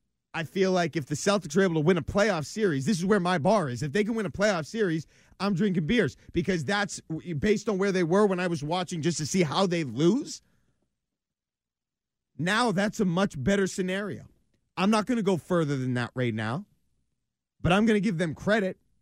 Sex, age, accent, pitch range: male, 30-49, American, 125-195 Hz